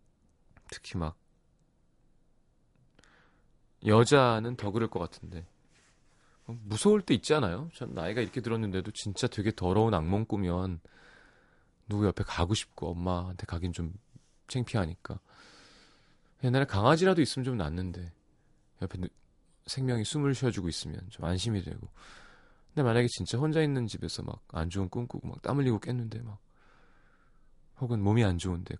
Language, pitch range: Korean, 90-125 Hz